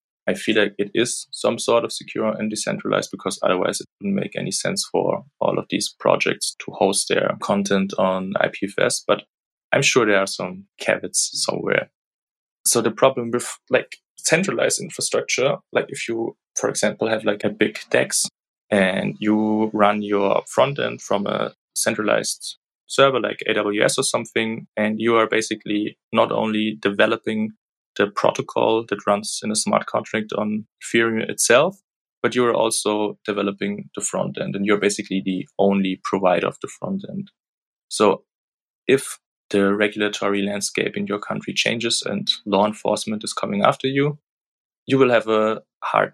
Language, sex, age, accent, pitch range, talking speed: English, male, 20-39, German, 100-115 Hz, 160 wpm